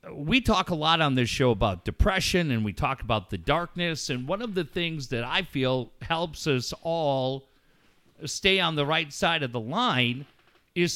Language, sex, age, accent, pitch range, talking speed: English, male, 50-69, American, 115-165 Hz, 190 wpm